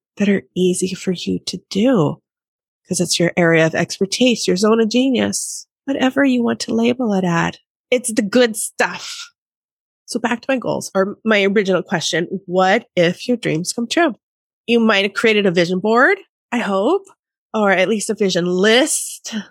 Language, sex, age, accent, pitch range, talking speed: English, female, 30-49, American, 190-240 Hz, 180 wpm